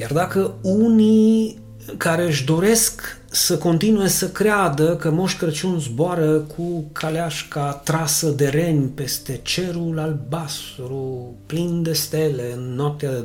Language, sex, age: Romanian, male, 30-49